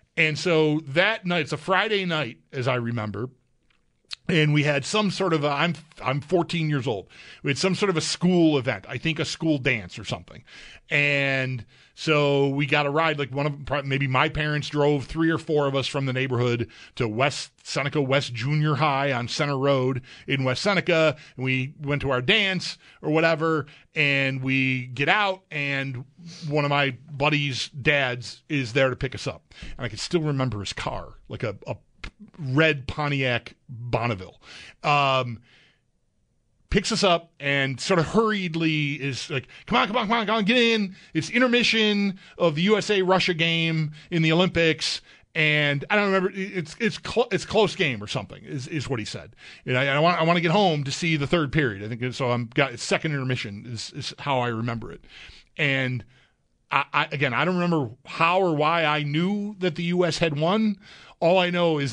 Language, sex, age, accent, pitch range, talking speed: English, male, 40-59, American, 135-170 Hz, 200 wpm